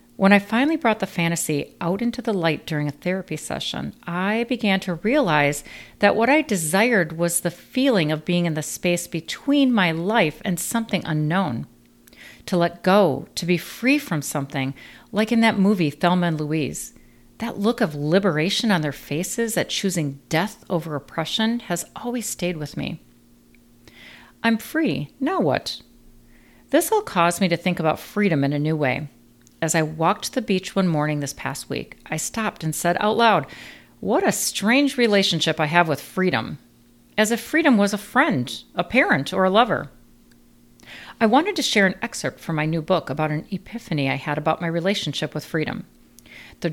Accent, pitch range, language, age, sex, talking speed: American, 150-210 Hz, English, 40-59, female, 180 wpm